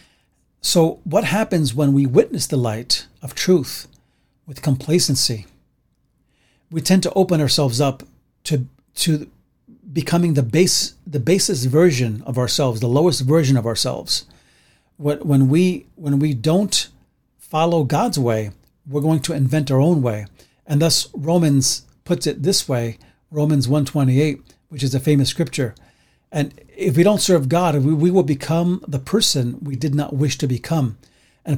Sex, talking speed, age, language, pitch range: male, 150 wpm, 40-59, English, 135-165 Hz